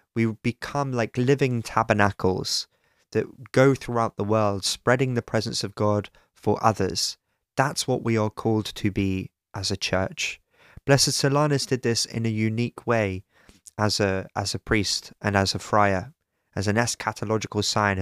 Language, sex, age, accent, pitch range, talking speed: English, male, 20-39, British, 100-125 Hz, 155 wpm